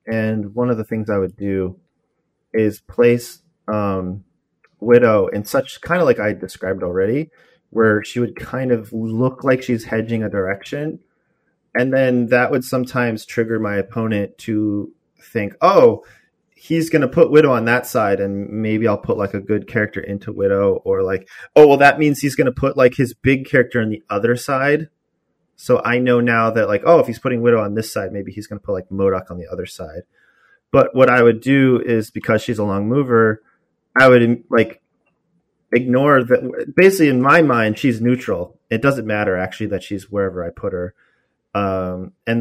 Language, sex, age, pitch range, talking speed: English, male, 30-49, 105-130 Hz, 195 wpm